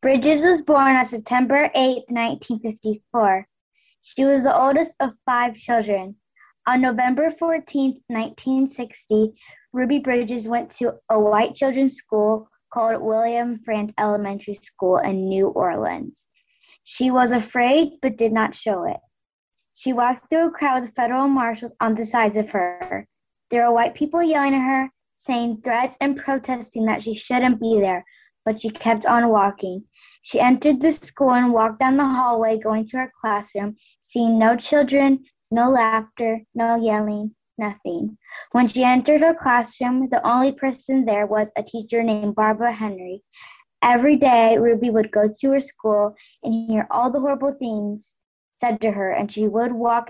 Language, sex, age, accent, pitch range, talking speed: English, female, 10-29, American, 220-265 Hz, 160 wpm